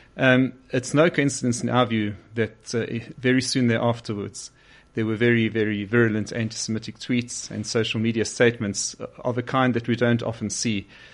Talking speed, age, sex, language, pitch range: 165 wpm, 30-49, male, English, 110-125 Hz